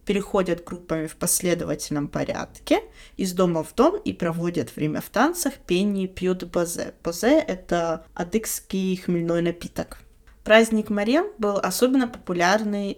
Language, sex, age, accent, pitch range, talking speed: Russian, female, 20-39, native, 170-220 Hz, 130 wpm